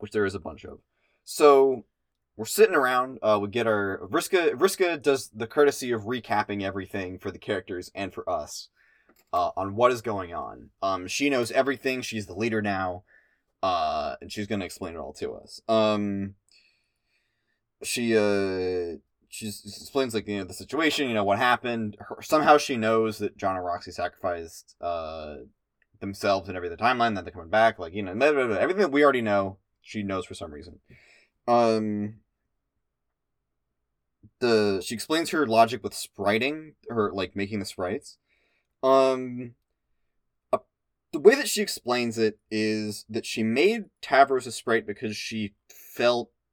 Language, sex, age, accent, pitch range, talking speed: English, male, 20-39, American, 100-125 Hz, 170 wpm